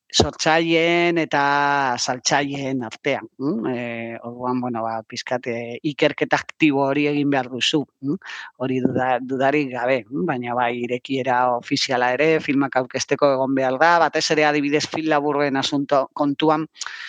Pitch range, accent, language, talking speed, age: 125-145 Hz, Spanish, English, 125 wpm, 30-49